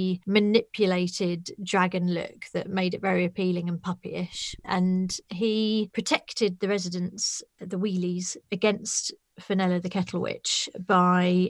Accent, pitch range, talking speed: British, 180-215 Hz, 120 wpm